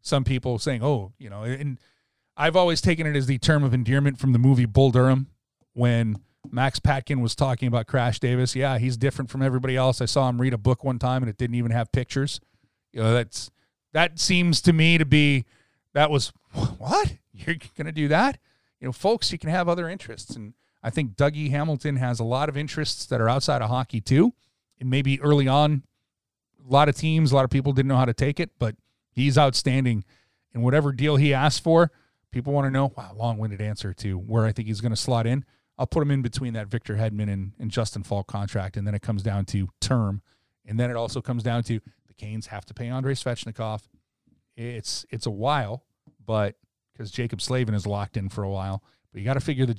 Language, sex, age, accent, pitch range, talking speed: English, male, 40-59, American, 110-140 Hz, 225 wpm